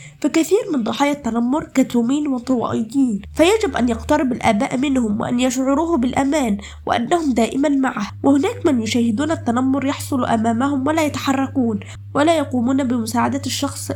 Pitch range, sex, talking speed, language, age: 230-285 Hz, female, 125 wpm, Arabic, 20-39